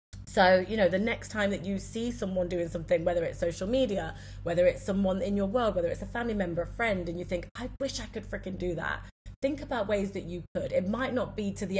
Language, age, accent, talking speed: English, 30-49, British, 260 wpm